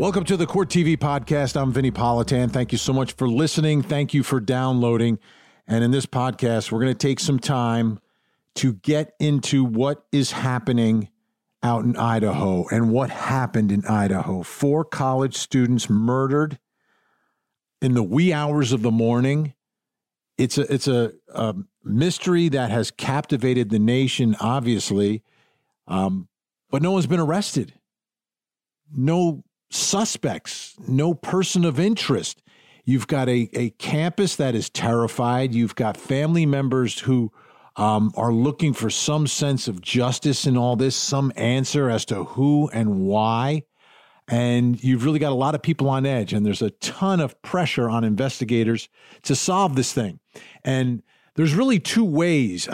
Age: 50-69